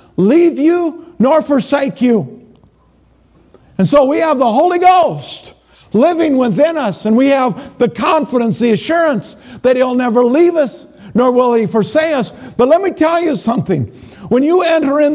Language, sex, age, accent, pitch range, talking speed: English, male, 50-69, American, 180-265 Hz, 165 wpm